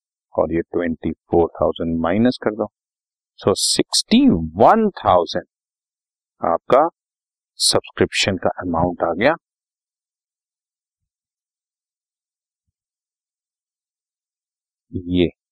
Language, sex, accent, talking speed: Hindi, male, native, 65 wpm